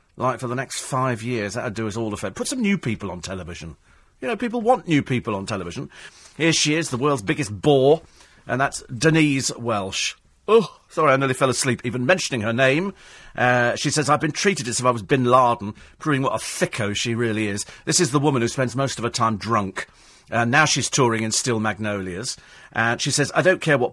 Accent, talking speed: British, 225 wpm